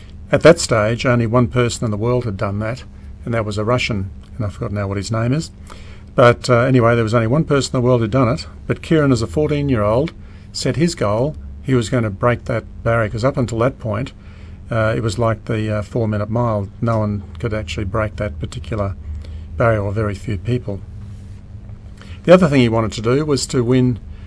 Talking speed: 220 wpm